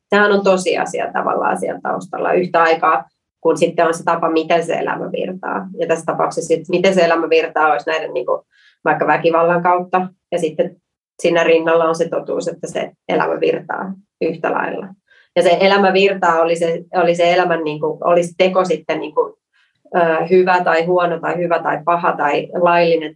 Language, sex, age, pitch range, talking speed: Finnish, female, 30-49, 165-185 Hz, 180 wpm